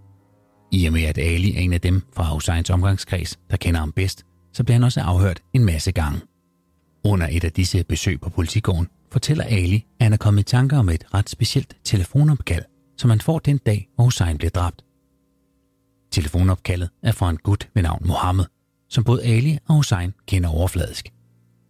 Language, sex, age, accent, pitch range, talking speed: Danish, male, 30-49, native, 85-110 Hz, 190 wpm